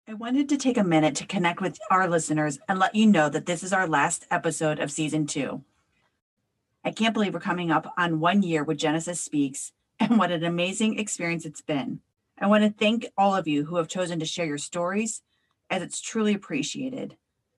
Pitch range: 160-210 Hz